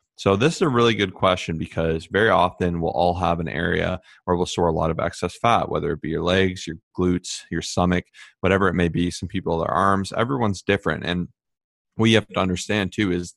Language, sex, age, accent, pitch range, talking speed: English, male, 20-39, American, 85-95 Hz, 220 wpm